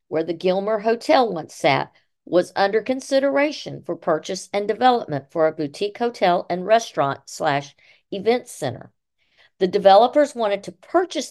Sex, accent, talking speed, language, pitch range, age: female, American, 145 wpm, English, 165-220 Hz, 50-69